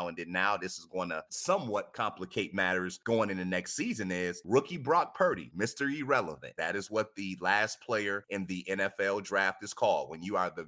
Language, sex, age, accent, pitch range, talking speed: English, male, 30-49, American, 90-105 Hz, 200 wpm